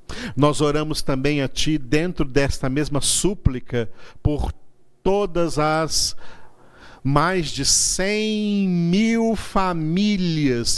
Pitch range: 130-160 Hz